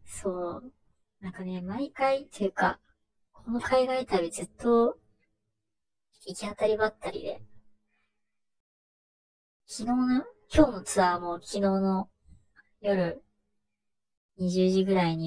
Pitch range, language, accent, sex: 170-210 Hz, Japanese, native, male